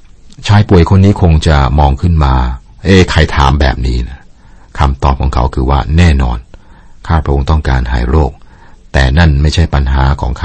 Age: 60-79